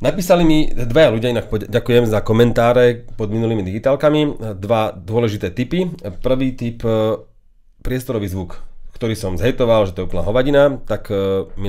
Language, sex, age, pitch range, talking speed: English, male, 30-49, 95-120 Hz, 145 wpm